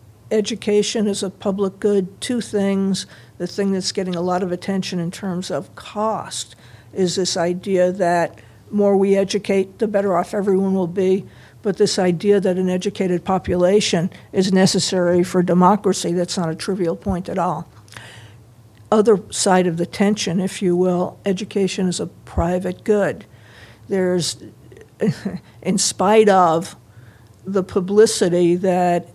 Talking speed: 145 wpm